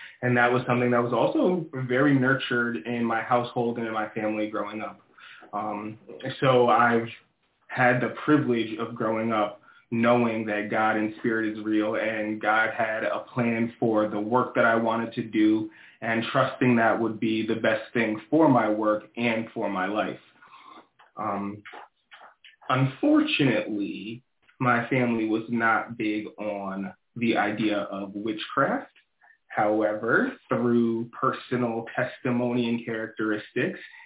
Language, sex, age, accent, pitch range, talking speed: English, male, 20-39, American, 110-125 Hz, 140 wpm